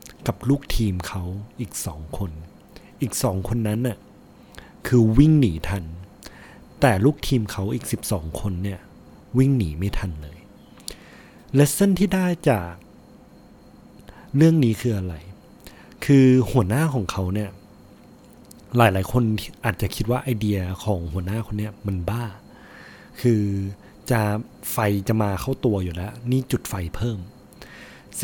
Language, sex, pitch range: Thai, male, 95-125 Hz